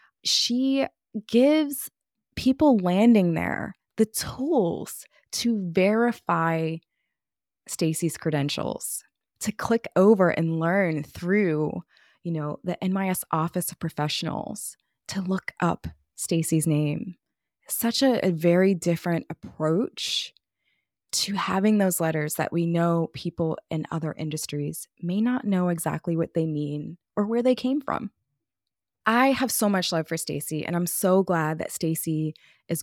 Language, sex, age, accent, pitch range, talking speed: English, female, 20-39, American, 160-210 Hz, 130 wpm